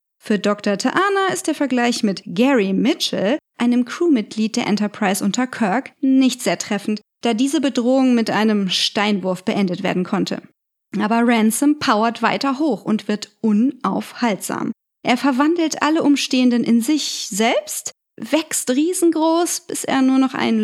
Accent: German